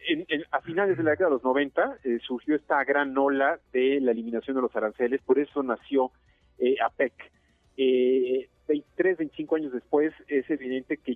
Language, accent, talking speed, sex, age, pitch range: Spanish, Mexican, 170 wpm, male, 40-59, 120-150 Hz